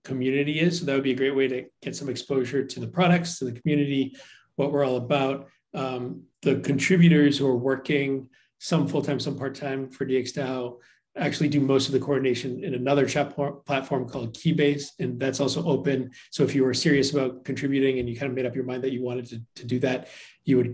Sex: male